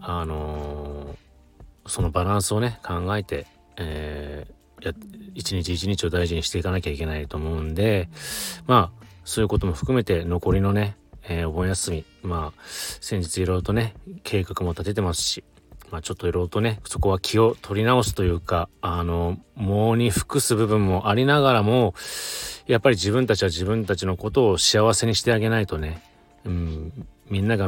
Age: 30-49